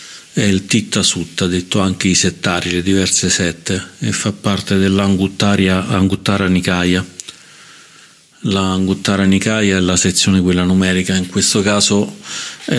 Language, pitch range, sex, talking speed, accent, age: Italian, 90-110 Hz, male, 130 wpm, native, 40-59